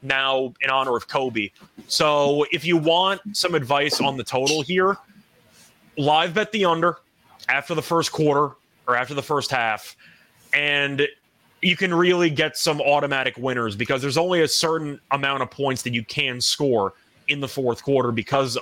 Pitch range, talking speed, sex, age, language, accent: 130-165 Hz, 170 wpm, male, 30-49, English, American